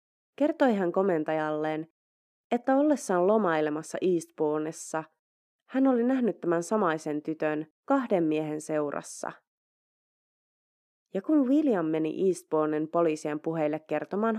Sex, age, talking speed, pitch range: female, 20-39, 100 wpm, 155-215 Hz